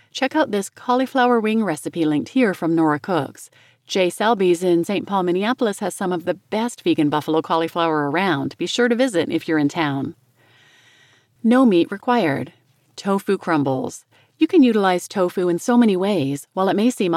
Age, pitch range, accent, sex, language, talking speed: 40-59, 160-225 Hz, American, female, English, 180 wpm